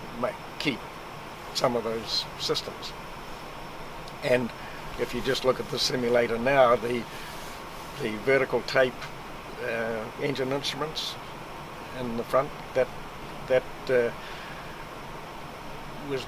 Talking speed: 105 wpm